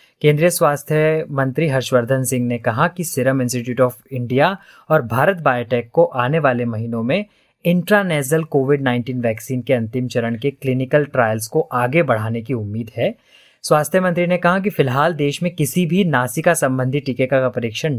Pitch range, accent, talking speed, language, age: 120-155 Hz, native, 175 wpm, Hindi, 20-39